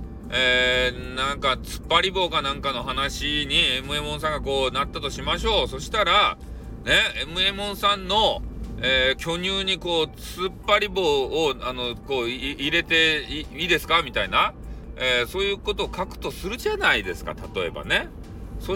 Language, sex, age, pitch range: Japanese, male, 40-59, 125-210 Hz